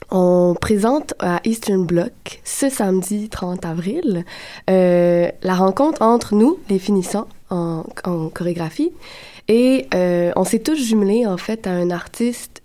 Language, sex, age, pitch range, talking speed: French, female, 20-39, 180-210 Hz, 140 wpm